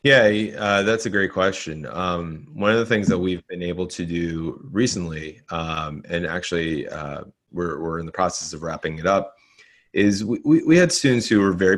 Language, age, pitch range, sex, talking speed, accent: English, 30-49, 85-105 Hz, male, 200 wpm, American